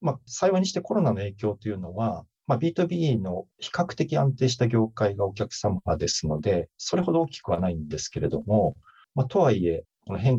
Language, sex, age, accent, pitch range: Japanese, male, 40-59, native, 100-130 Hz